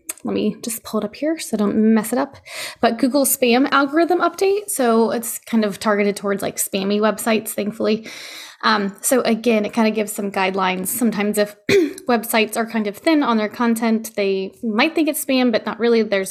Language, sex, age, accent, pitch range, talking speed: English, female, 10-29, American, 195-235 Hz, 200 wpm